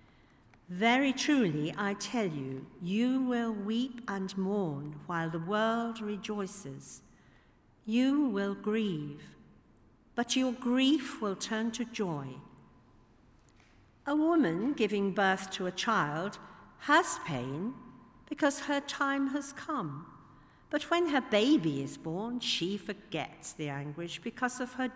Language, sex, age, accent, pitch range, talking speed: English, female, 50-69, British, 155-245 Hz, 125 wpm